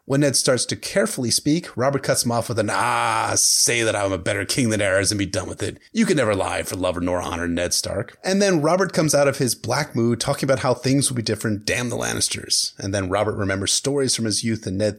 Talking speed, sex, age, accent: 265 wpm, male, 30-49, American